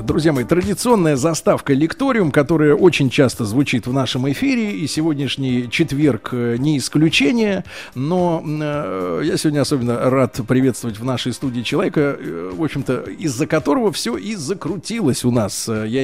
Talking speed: 140 wpm